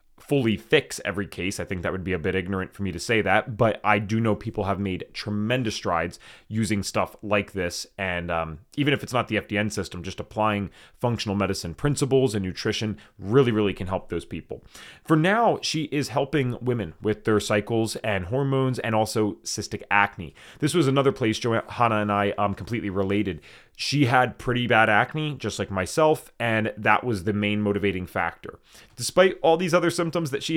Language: English